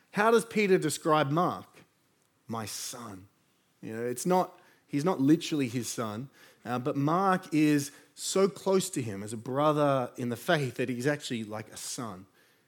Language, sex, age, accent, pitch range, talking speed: English, male, 30-49, Australian, 125-160 Hz, 170 wpm